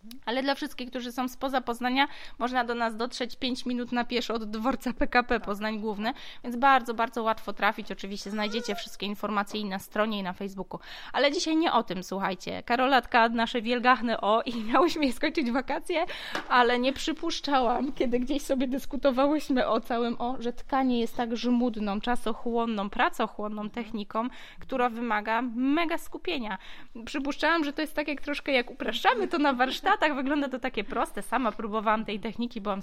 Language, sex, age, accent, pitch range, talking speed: Polish, female, 20-39, native, 220-275 Hz, 170 wpm